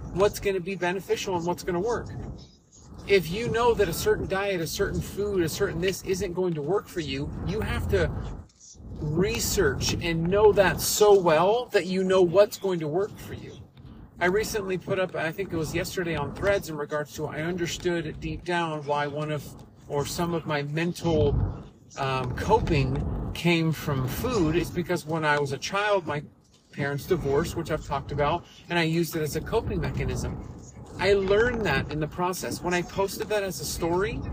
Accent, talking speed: American, 200 wpm